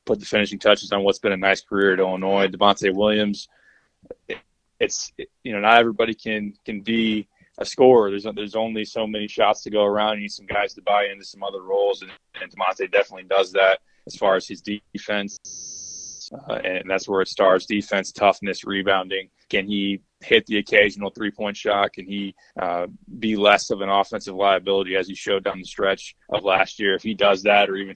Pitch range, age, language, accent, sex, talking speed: 95-105 Hz, 20-39, English, American, male, 200 wpm